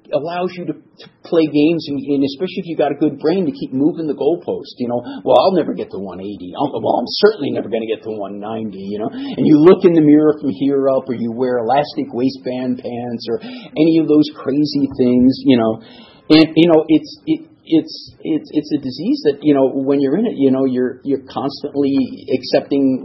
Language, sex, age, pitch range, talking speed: English, male, 50-69, 120-155 Hz, 225 wpm